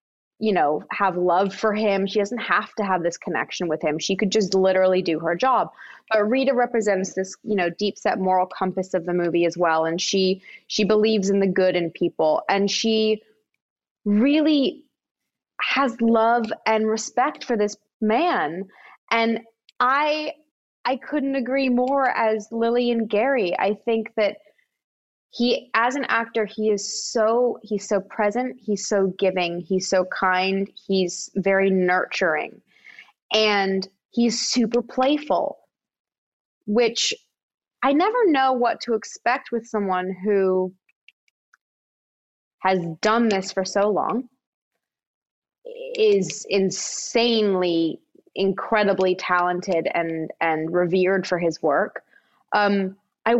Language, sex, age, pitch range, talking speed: English, female, 20-39, 190-240 Hz, 135 wpm